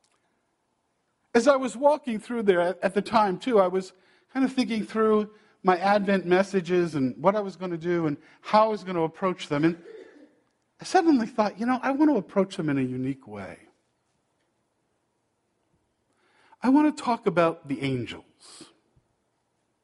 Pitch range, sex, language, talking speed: 195-290 Hz, male, English, 170 wpm